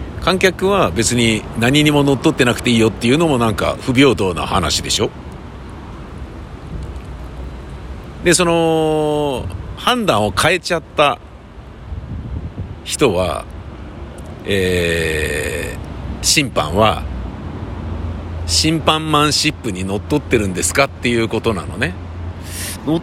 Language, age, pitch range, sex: Japanese, 50-69, 85-140 Hz, male